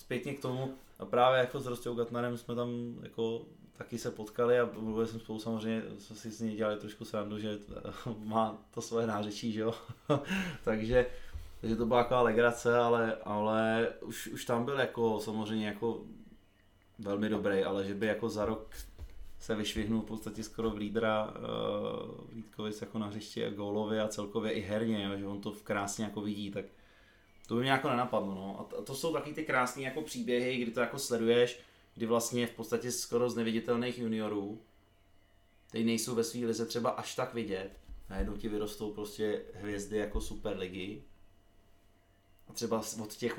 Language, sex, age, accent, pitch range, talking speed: Czech, male, 20-39, native, 105-120 Hz, 175 wpm